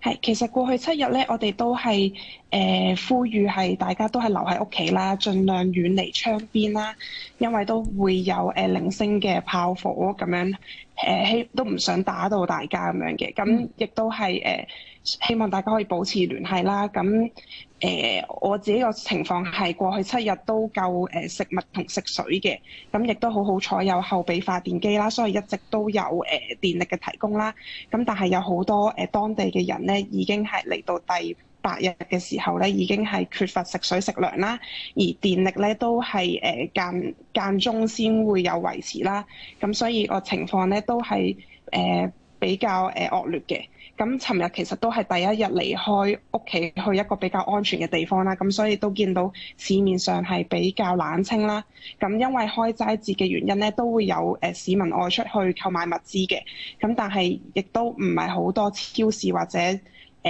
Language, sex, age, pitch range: Chinese, female, 20-39, 185-220 Hz